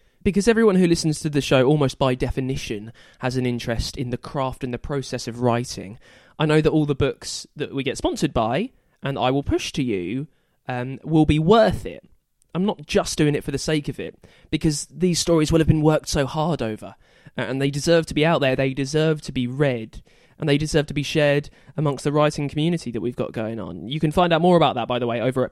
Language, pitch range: English, 125-155 Hz